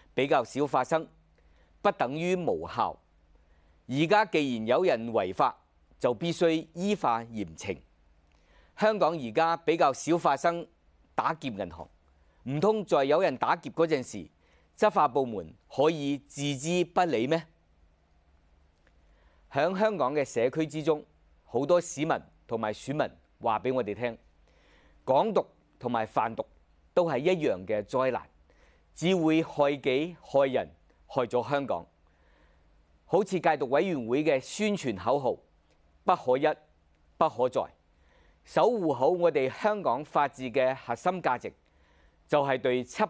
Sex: male